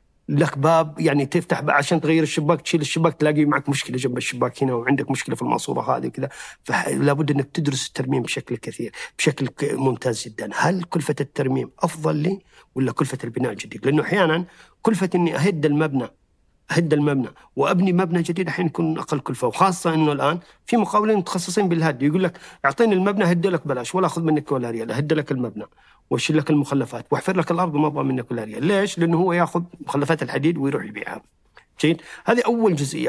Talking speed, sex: 180 wpm, male